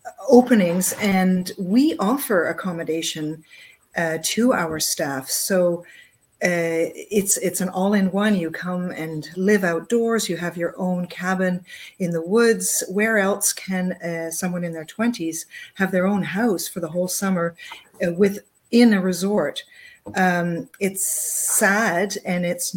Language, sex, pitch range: English, female, 170-200 Hz